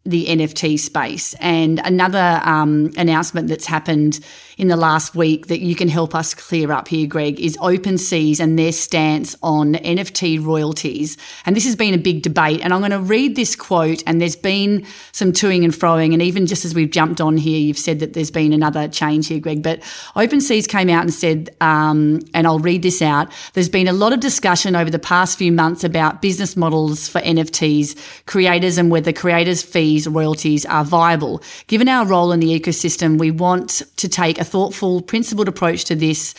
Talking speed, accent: 200 wpm, Australian